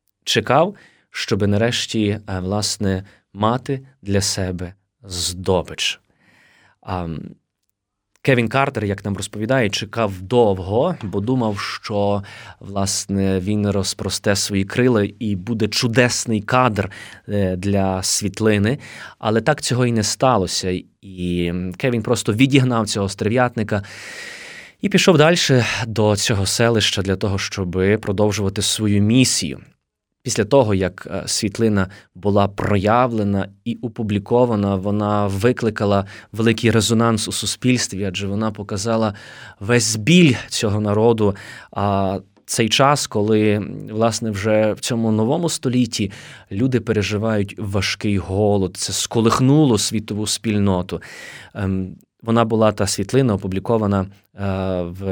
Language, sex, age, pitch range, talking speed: Ukrainian, male, 20-39, 100-115 Hz, 105 wpm